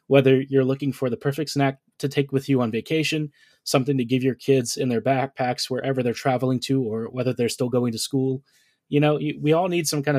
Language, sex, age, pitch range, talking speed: English, male, 20-39, 130-150 Hz, 230 wpm